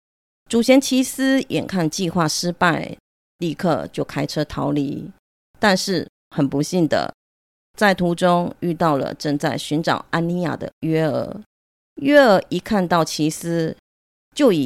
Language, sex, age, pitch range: Chinese, female, 30-49, 145-185 Hz